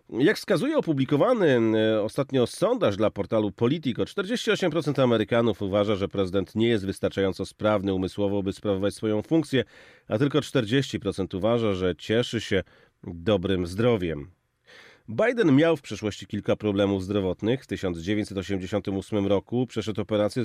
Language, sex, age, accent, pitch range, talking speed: Polish, male, 40-59, native, 100-120 Hz, 125 wpm